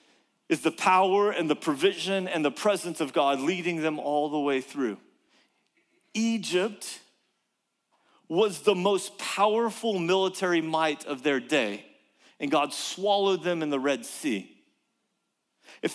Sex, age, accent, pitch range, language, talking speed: male, 40-59, American, 160-210 Hz, English, 135 wpm